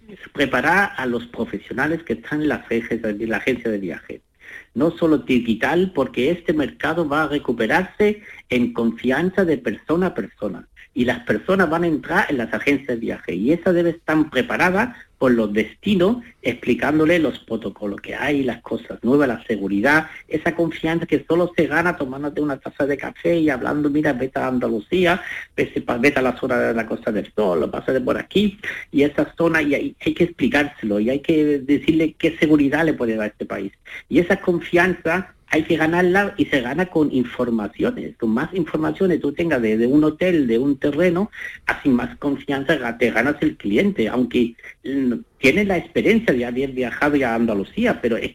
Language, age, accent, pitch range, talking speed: Spanish, 50-69, Spanish, 125-175 Hz, 185 wpm